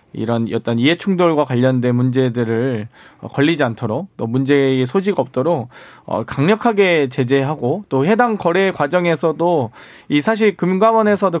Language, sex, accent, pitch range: Korean, male, native, 135-180 Hz